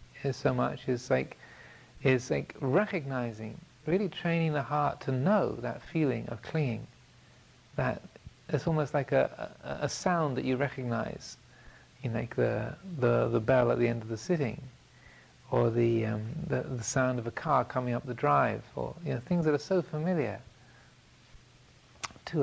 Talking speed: 160 wpm